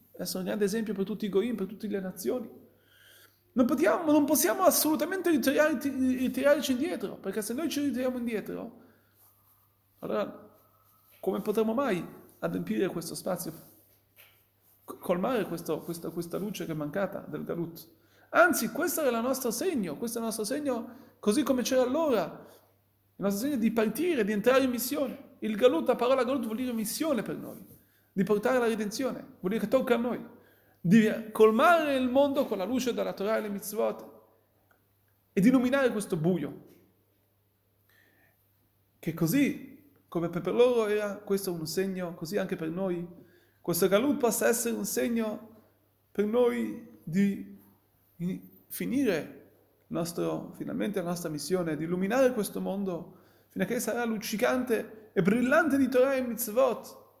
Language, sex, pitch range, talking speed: Italian, male, 170-255 Hz, 150 wpm